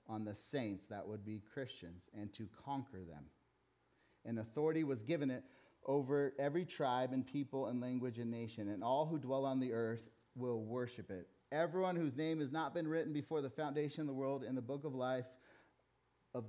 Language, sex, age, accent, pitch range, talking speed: English, male, 30-49, American, 110-150 Hz, 195 wpm